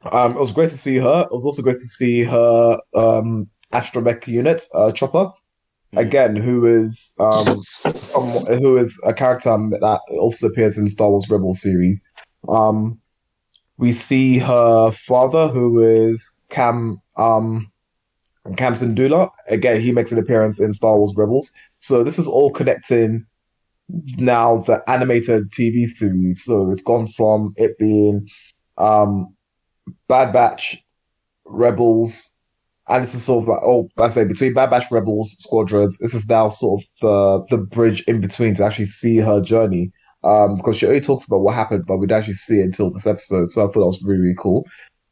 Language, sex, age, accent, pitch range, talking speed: English, male, 20-39, British, 105-120 Hz, 175 wpm